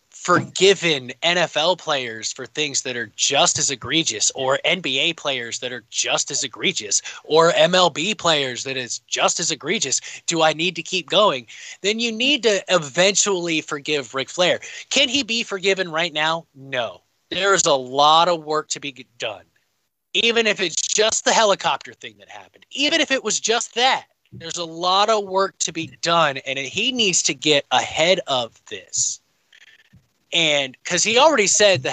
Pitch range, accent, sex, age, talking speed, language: 145-200 Hz, American, male, 20-39, 175 wpm, English